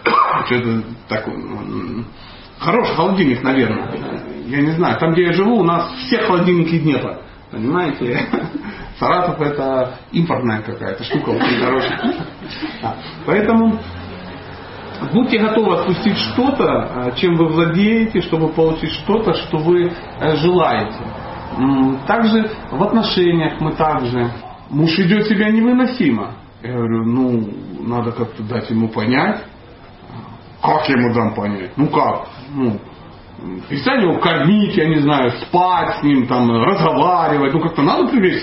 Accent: native